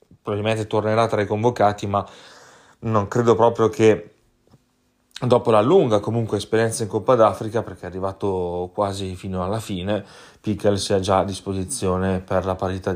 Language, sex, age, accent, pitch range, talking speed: Italian, male, 30-49, native, 100-120 Hz, 150 wpm